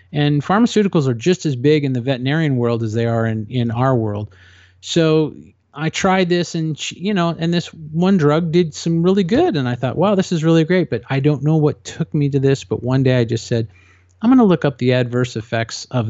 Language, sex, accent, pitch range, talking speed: English, male, American, 115-160 Hz, 240 wpm